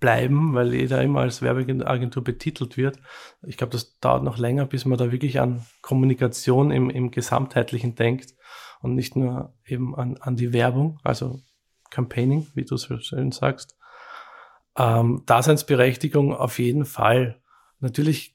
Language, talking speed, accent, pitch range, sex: German, 150 wpm, Austrian, 120-140 Hz, male